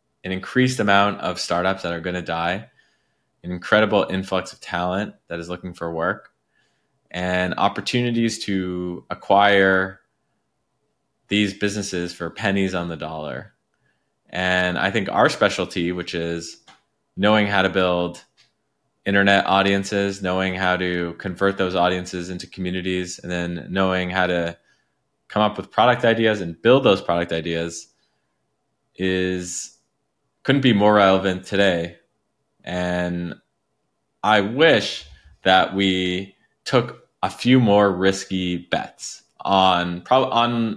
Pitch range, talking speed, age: 90-100 Hz, 125 wpm, 20-39